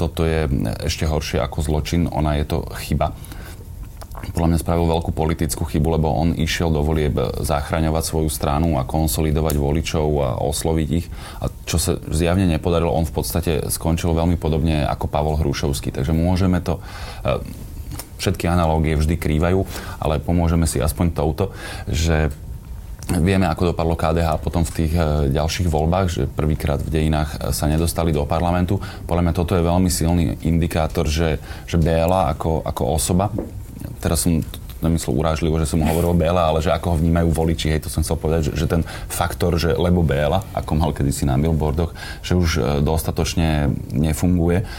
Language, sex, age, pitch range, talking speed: Slovak, male, 30-49, 80-85 Hz, 165 wpm